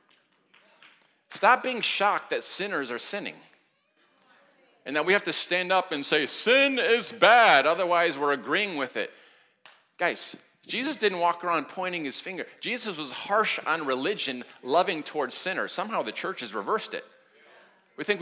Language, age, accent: English, 40-59, American